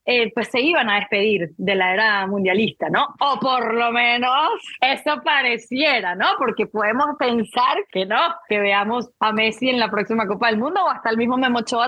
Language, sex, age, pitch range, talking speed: Spanish, female, 20-39, 220-280 Hz, 190 wpm